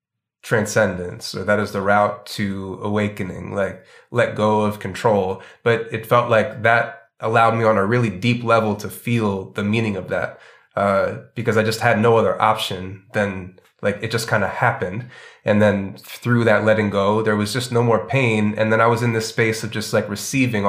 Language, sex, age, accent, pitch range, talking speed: English, male, 20-39, American, 105-120 Hz, 200 wpm